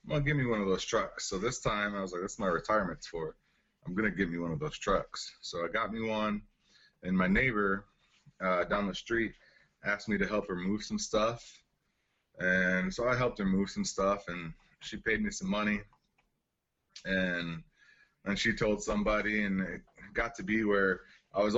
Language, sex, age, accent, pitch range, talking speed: English, male, 20-39, American, 95-110 Hz, 200 wpm